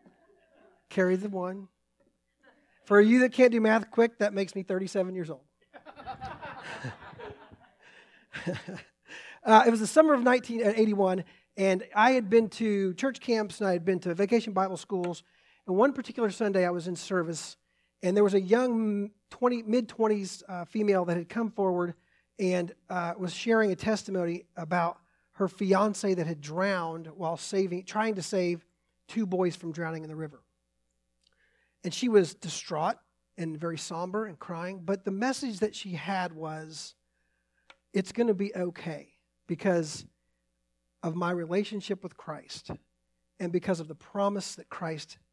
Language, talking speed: English, 155 wpm